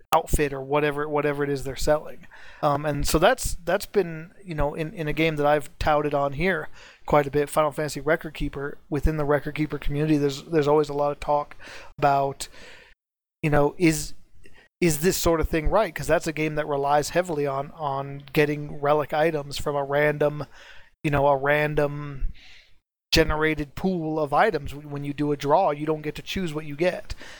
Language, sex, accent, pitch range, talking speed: English, male, American, 145-160 Hz, 195 wpm